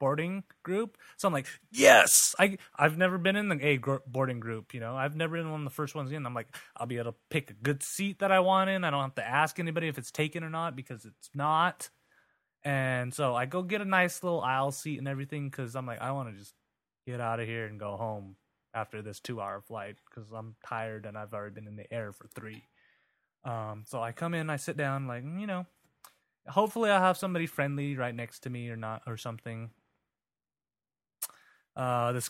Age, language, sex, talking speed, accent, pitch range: 20-39, English, male, 230 wpm, American, 120-160 Hz